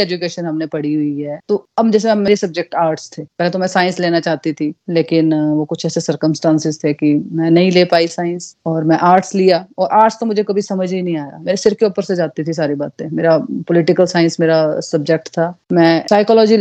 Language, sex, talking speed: Hindi, female, 65 wpm